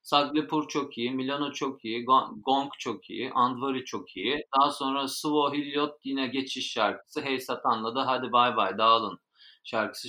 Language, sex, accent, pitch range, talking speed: Turkish, male, native, 115-150 Hz, 155 wpm